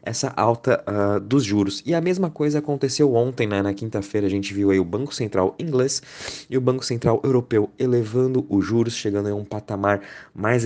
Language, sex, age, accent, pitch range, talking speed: Portuguese, male, 20-39, Brazilian, 95-120 Hz, 195 wpm